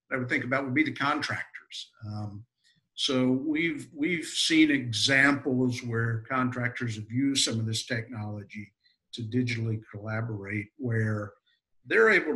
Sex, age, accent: male, 50-69, American